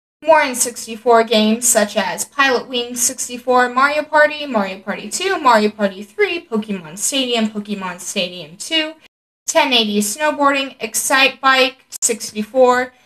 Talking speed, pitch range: 125 wpm, 215-285 Hz